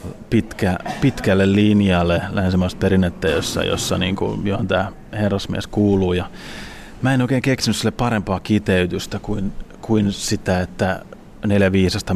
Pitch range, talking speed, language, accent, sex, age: 95-105 Hz, 130 wpm, Finnish, native, male, 30-49